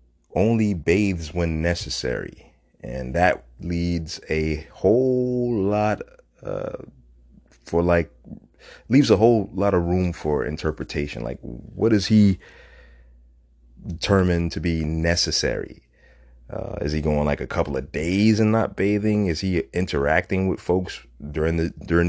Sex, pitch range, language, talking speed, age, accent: male, 70-90 Hz, English, 135 wpm, 30-49, American